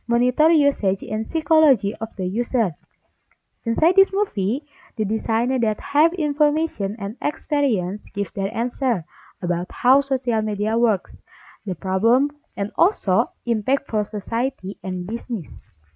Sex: female